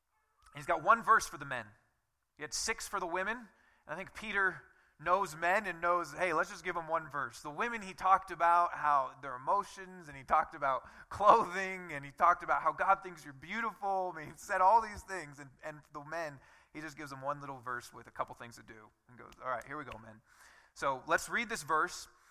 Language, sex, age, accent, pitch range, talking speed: English, male, 20-39, American, 125-175 Hz, 235 wpm